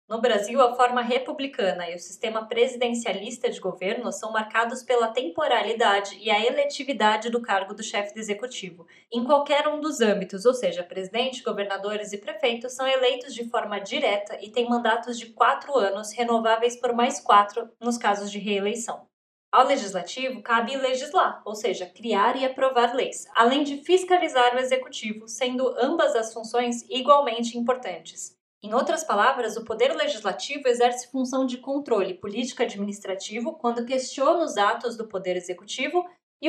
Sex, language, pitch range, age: female, Portuguese, 210-260 Hz, 20-39